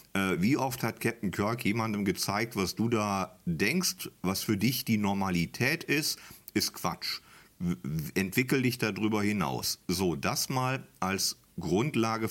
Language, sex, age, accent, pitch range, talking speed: German, male, 50-69, German, 95-115 Hz, 135 wpm